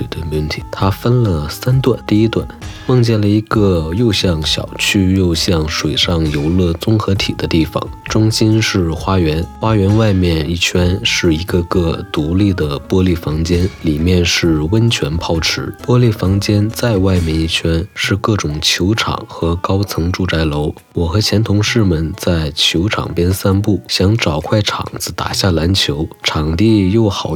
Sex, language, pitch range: male, Chinese, 80-105 Hz